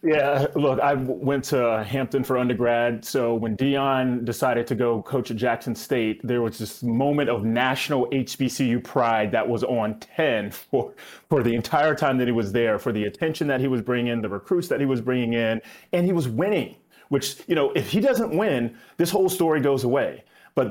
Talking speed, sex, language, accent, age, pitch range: 205 wpm, male, English, American, 30-49, 115-135 Hz